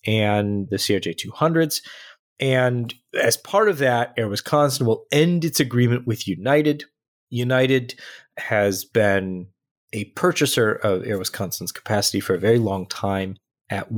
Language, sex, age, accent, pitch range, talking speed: English, male, 30-49, American, 95-135 Hz, 135 wpm